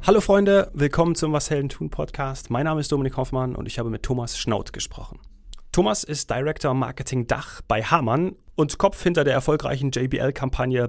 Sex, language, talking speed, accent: male, German, 180 wpm, German